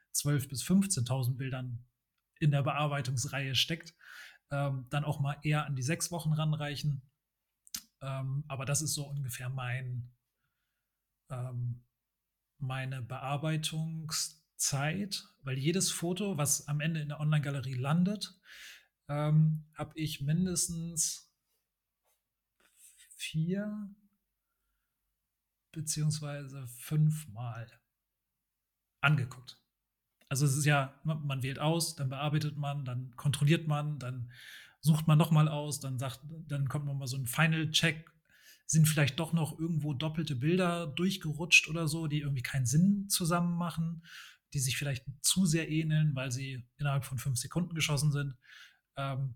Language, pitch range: German, 135-160 Hz